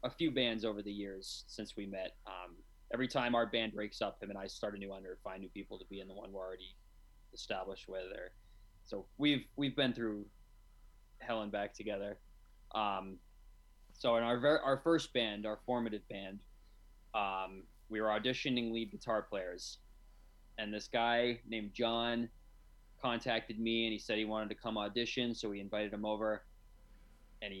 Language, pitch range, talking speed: English, 95-125 Hz, 185 wpm